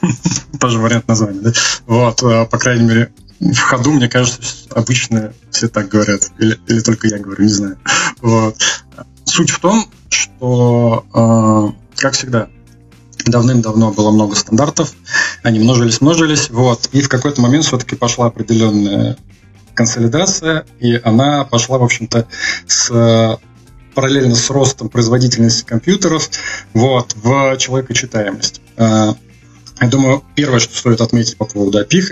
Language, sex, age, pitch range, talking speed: Russian, male, 20-39, 110-125 Hz, 125 wpm